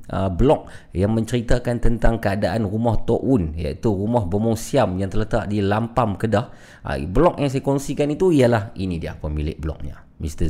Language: Malay